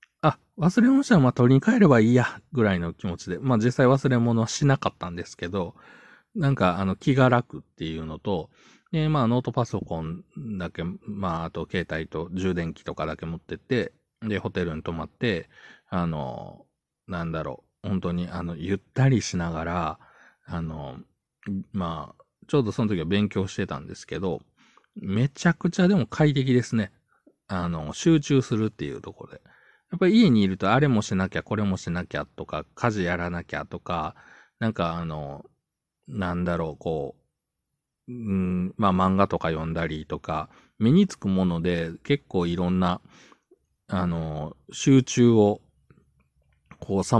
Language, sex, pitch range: Japanese, male, 85-125 Hz